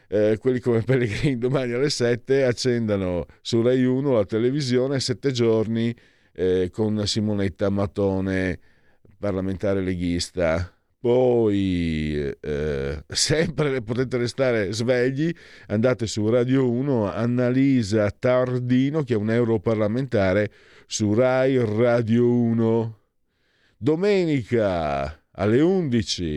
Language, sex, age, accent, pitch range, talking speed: Italian, male, 50-69, native, 95-125 Hz, 100 wpm